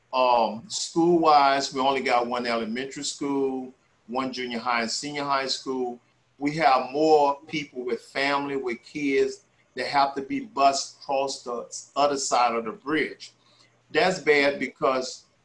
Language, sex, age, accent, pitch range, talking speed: English, male, 40-59, American, 125-150 Hz, 150 wpm